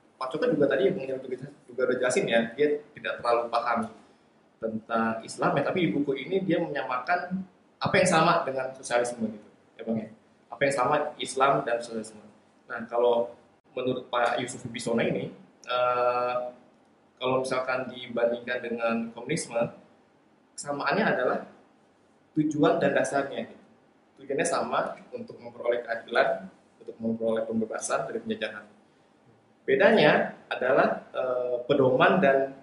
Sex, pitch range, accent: male, 115-130 Hz, native